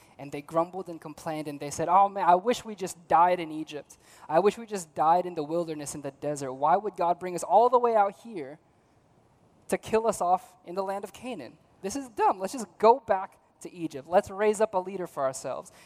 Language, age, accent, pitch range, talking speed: English, 20-39, American, 135-185 Hz, 240 wpm